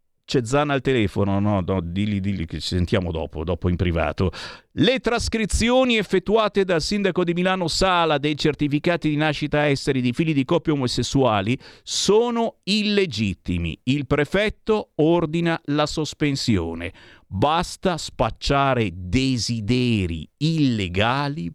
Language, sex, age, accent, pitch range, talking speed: Italian, male, 50-69, native, 95-150 Hz, 120 wpm